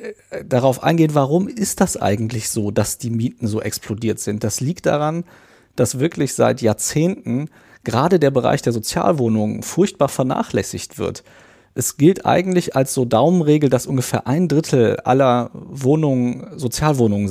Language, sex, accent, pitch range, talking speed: German, male, German, 115-155 Hz, 140 wpm